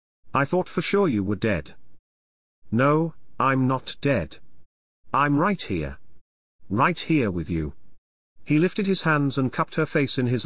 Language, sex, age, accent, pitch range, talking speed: English, male, 40-59, British, 100-155 Hz, 160 wpm